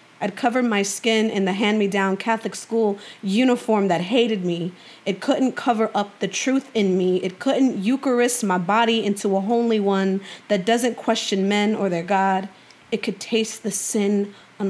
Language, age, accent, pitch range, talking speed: English, 30-49, American, 195-220 Hz, 175 wpm